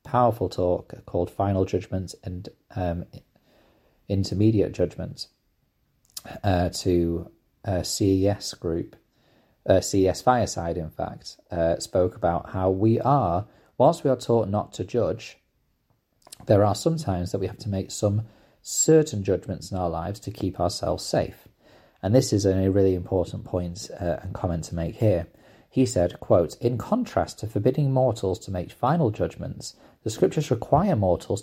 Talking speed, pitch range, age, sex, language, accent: 155 wpm, 95-120 Hz, 30-49, male, English, British